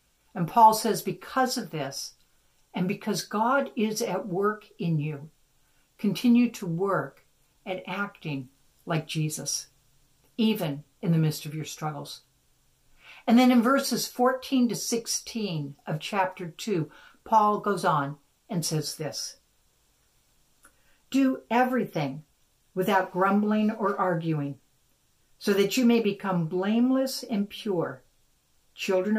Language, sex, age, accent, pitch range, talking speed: English, female, 60-79, American, 155-215 Hz, 120 wpm